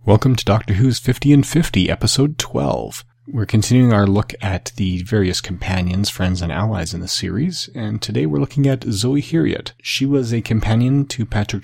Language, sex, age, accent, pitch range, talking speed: English, male, 30-49, American, 95-120 Hz, 185 wpm